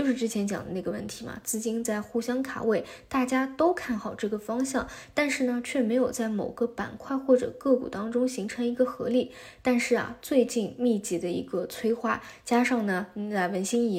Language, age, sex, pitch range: Chinese, 20-39, female, 205-250 Hz